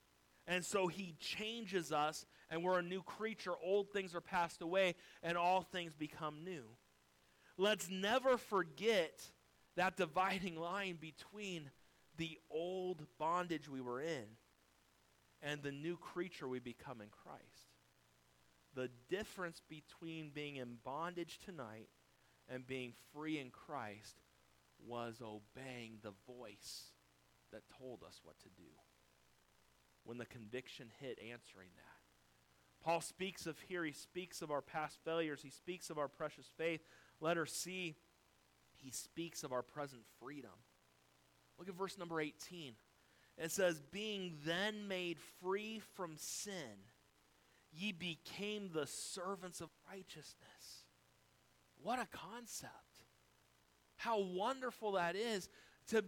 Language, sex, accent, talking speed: English, male, American, 130 wpm